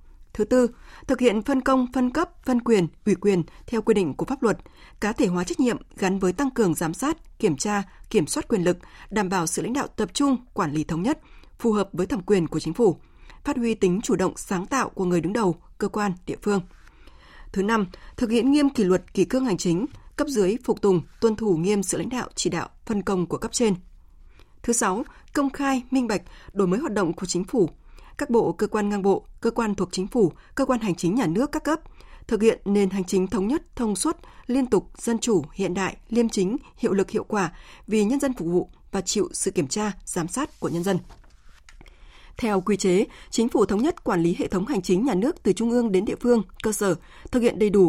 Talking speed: 240 wpm